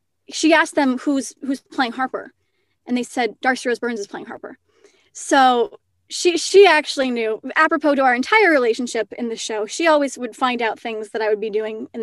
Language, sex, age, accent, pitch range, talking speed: English, female, 20-39, American, 230-305 Hz, 205 wpm